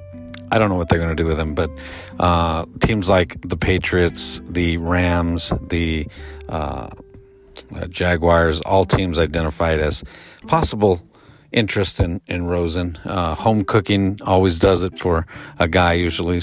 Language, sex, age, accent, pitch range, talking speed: English, male, 50-69, American, 85-100 Hz, 150 wpm